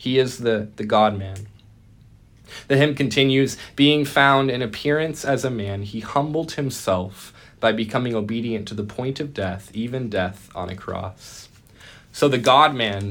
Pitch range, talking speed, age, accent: 105-130 Hz, 155 wpm, 20-39, American